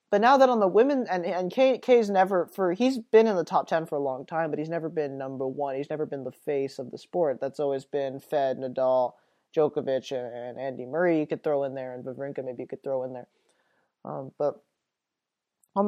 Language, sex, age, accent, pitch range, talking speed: English, male, 30-49, American, 145-210 Hz, 235 wpm